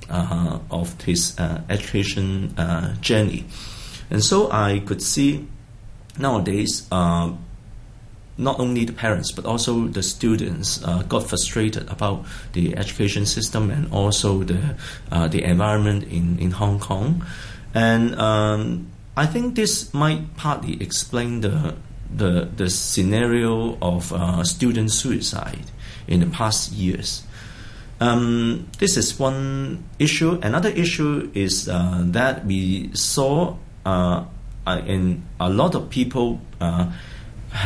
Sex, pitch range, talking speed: male, 90-120 Hz, 125 wpm